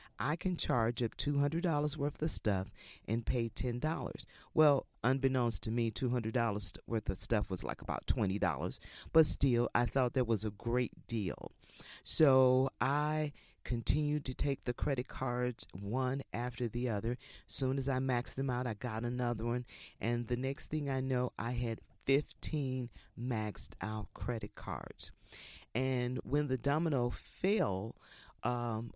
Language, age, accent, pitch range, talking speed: English, 40-59, American, 110-130 Hz, 155 wpm